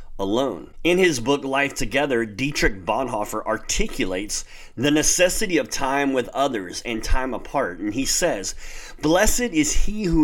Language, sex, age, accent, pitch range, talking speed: English, male, 40-59, American, 110-160 Hz, 145 wpm